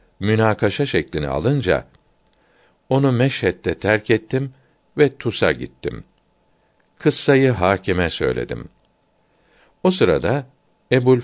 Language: Turkish